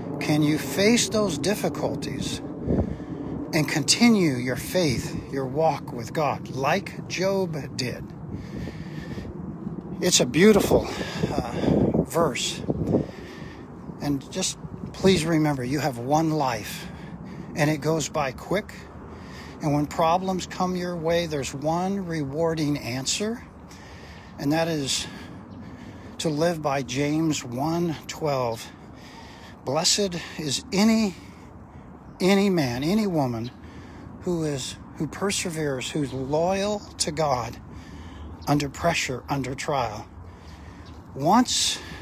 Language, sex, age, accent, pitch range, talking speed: English, male, 60-79, American, 130-170 Hz, 105 wpm